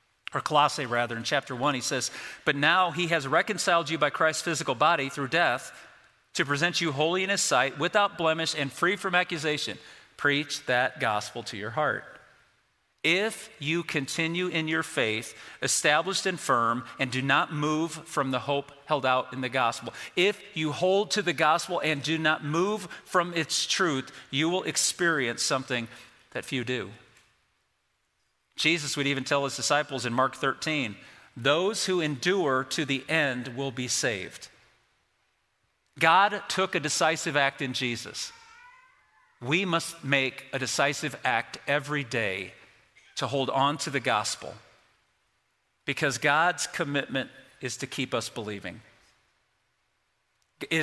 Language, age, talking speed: English, 40-59, 150 wpm